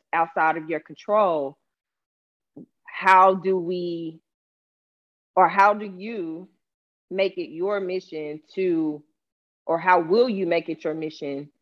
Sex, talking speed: female, 125 wpm